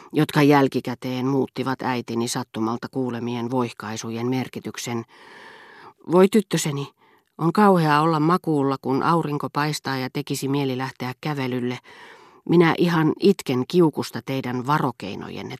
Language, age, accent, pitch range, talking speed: Finnish, 40-59, native, 125-165 Hz, 110 wpm